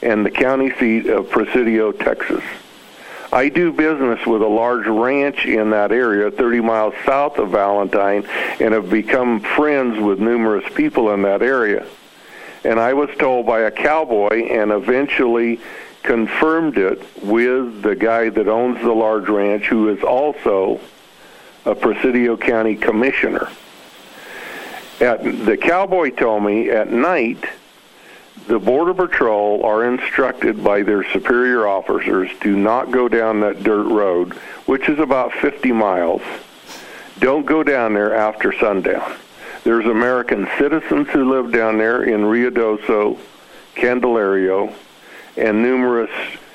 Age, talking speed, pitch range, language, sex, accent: 60-79, 135 wpm, 110-125 Hz, English, male, American